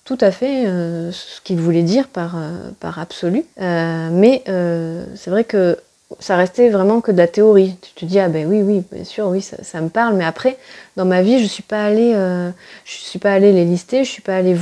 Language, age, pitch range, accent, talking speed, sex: French, 30-49, 170-215 Hz, French, 240 wpm, female